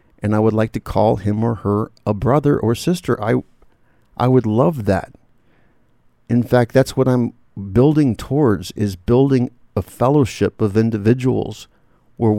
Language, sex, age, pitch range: English, male, 50-69, 100-120 Hz